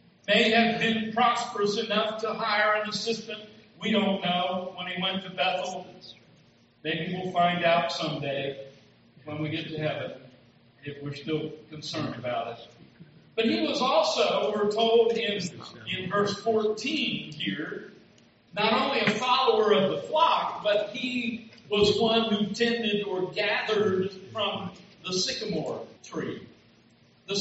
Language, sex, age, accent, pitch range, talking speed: English, male, 50-69, American, 170-220 Hz, 140 wpm